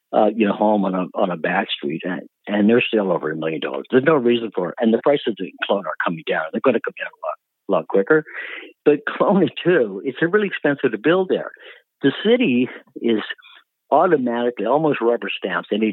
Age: 60-79